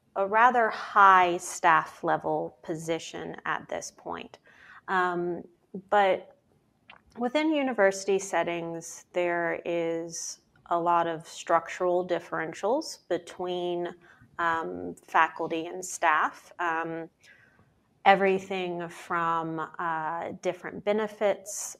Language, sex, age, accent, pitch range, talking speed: English, female, 30-49, American, 160-185 Hz, 90 wpm